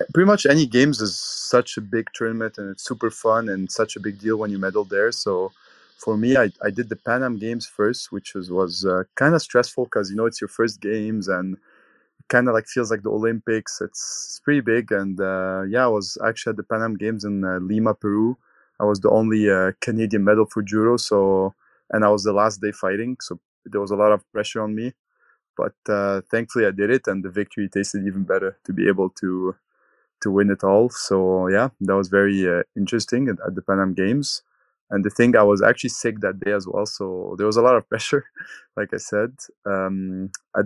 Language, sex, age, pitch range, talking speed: English, male, 20-39, 95-115 Hz, 225 wpm